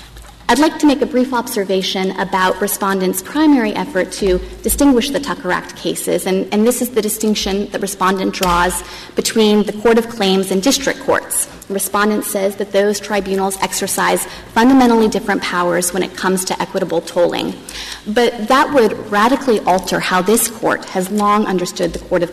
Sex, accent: female, American